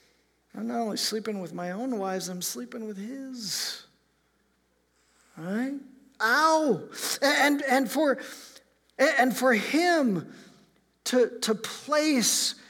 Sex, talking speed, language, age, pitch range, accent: male, 110 wpm, English, 50-69, 180-275 Hz, American